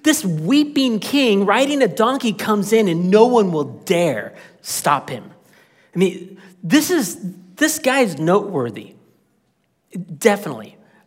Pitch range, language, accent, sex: 170-215 Hz, English, American, male